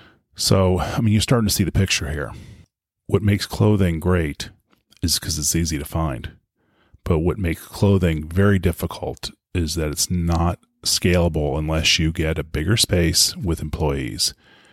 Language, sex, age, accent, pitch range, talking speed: English, male, 30-49, American, 80-95 Hz, 160 wpm